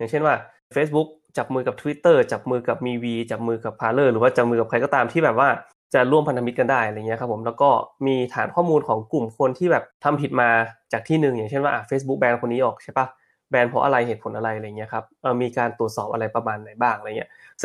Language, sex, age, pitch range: Thai, male, 20-39, 115-145 Hz